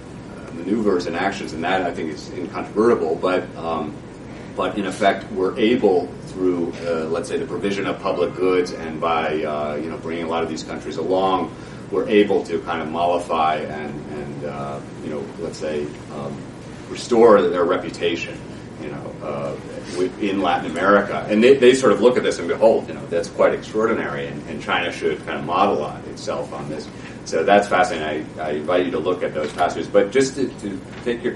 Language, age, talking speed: English, 30-49, 200 wpm